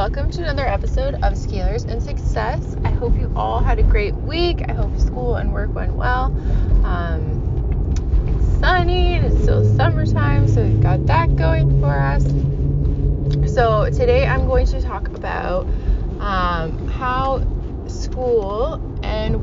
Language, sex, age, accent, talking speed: English, female, 20-39, American, 150 wpm